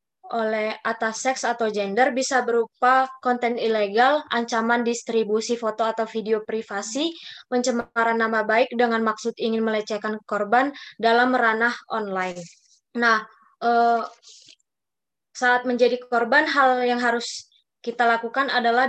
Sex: female